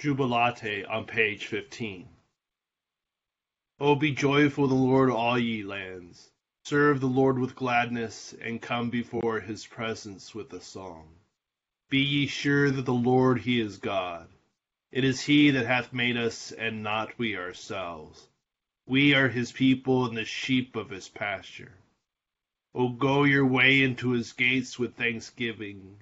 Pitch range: 110-130 Hz